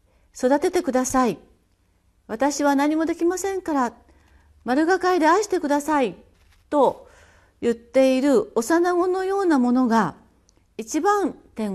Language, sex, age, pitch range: Japanese, female, 40-59, 185-285 Hz